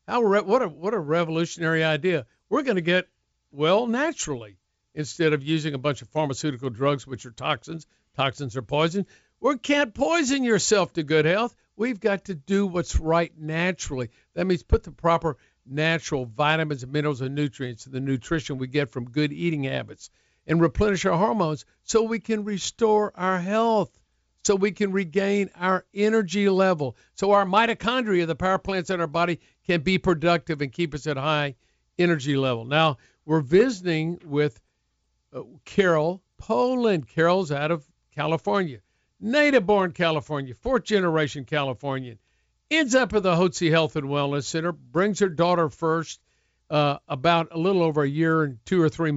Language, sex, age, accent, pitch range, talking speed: English, male, 50-69, American, 145-190 Hz, 170 wpm